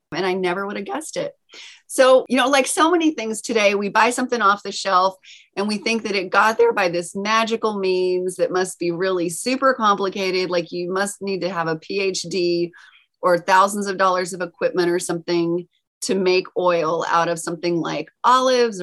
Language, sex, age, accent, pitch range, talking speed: English, female, 30-49, American, 185-275 Hz, 200 wpm